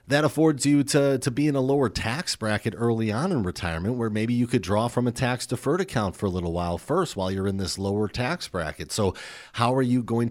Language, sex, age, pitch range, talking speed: English, male, 40-59, 95-120 Hz, 240 wpm